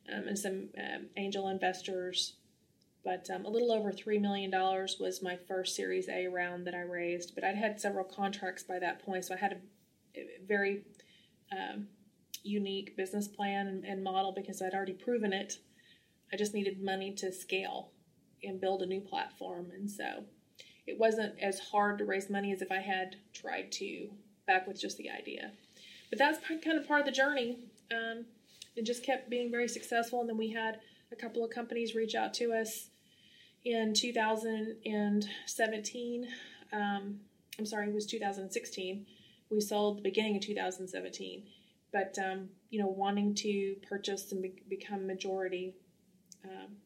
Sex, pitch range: female, 190-220 Hz